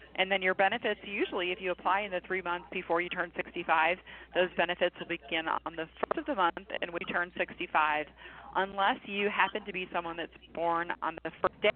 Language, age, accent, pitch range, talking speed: English, 30-49, American, 165-195 Hz, 215 wpm